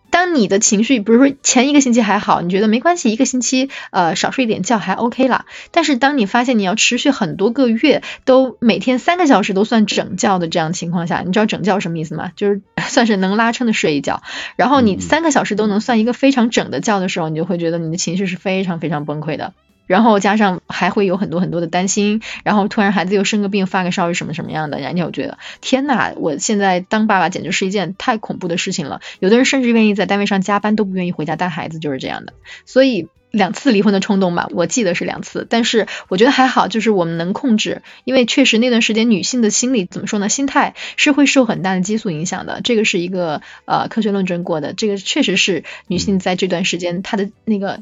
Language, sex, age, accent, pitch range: Chinese, female, 20-39, native, 185-235 Hz